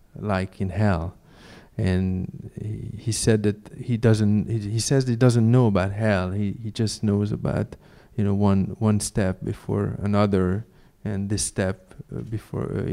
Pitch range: 100-120 Hz